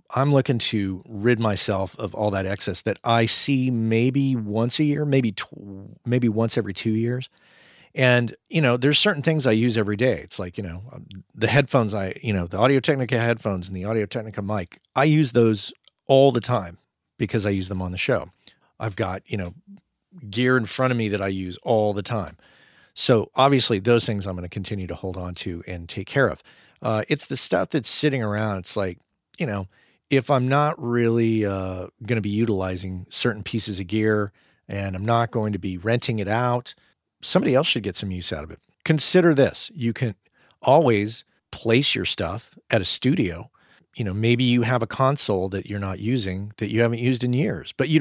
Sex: male